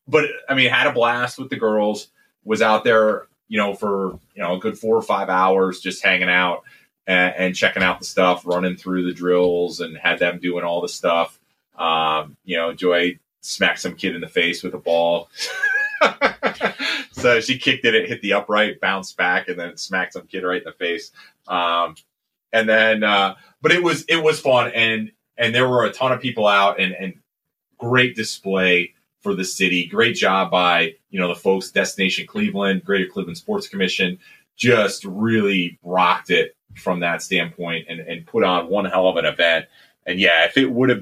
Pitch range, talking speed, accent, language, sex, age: 90-115 Hz, 200 wpm, American, English, male, 30-49